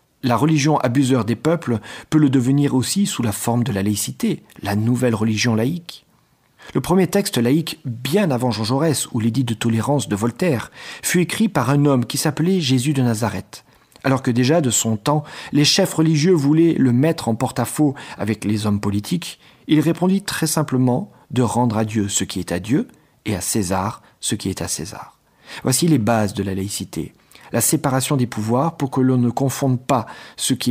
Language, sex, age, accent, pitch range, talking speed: French, male, 40-59, French, 110-145 Hz, 195 wpm